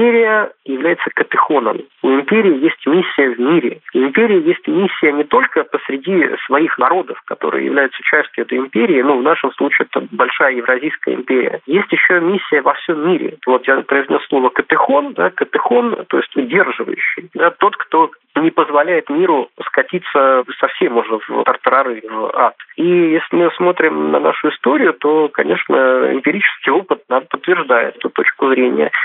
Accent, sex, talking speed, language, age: native, male, 155 wpm, Russian, 40-59